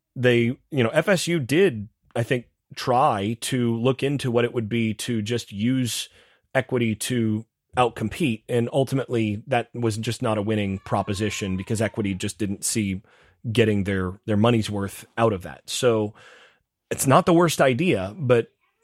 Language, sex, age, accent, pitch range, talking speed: English, male, 30-49, American, 100-125 Hz, 160 wpm